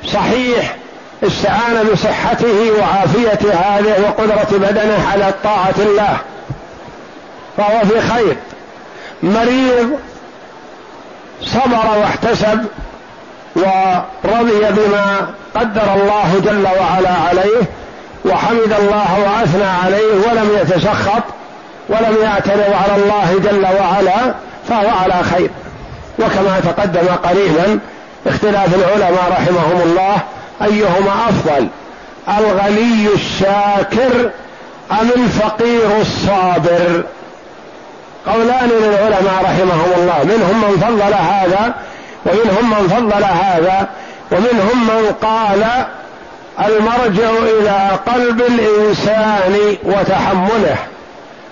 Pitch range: 195-220 Hz